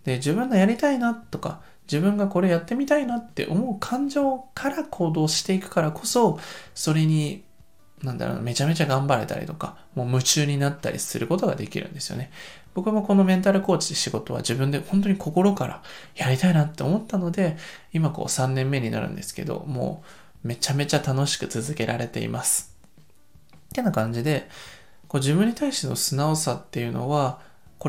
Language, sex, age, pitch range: Japanese, male, 20-39, 140-200 Hz